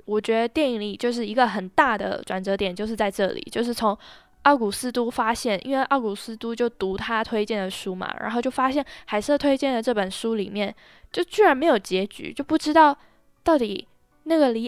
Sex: female